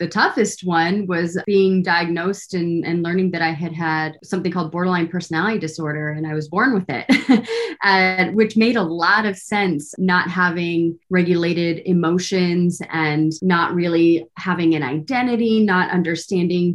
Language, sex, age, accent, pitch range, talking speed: English, female, 30-49, American, 170-205 Hz, 150 wpm